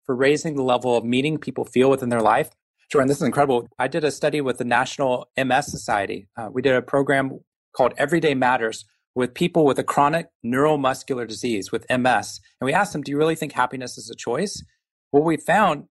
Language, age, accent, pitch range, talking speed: English, 30-49, American, 125-165 Hz, 210 wpm